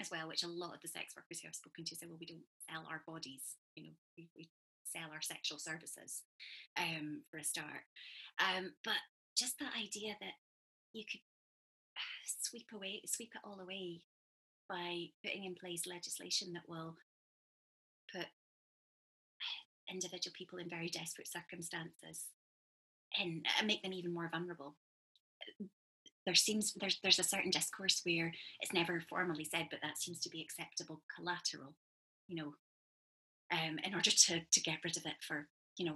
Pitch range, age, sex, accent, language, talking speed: 155-180 Hz, 20-39, female, British, English, 170 wpm